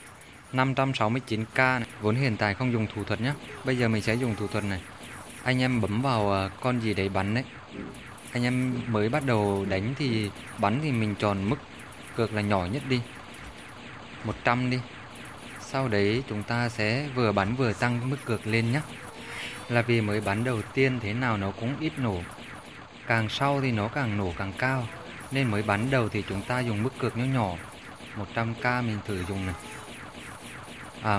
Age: 20-39